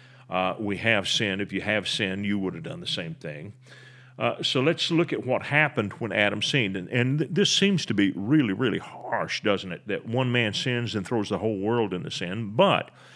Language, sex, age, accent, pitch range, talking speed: English, male, 40-59, American, 110-145 Hz, 220 wpm